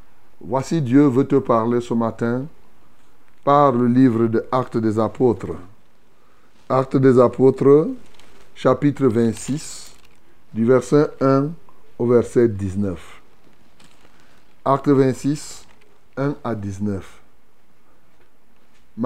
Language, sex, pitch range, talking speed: French, male, 115-140 Hz, 90 wpm